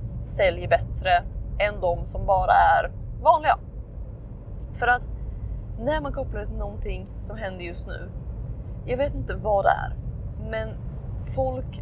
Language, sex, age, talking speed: Swedish, female, 20-39, 135 wpm